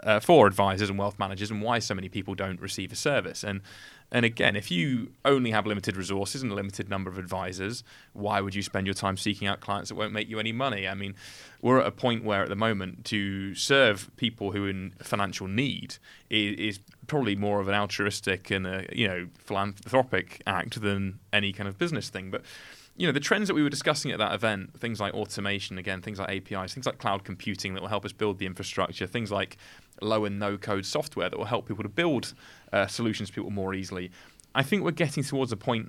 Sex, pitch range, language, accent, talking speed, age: male, 95-115 Hz, English, British, 225 wpm, 20-39